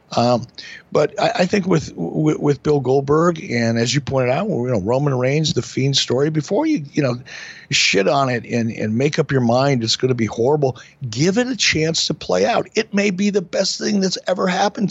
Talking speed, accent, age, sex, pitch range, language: 225 wpm, American, 60-79, male, 125-170 Hz, English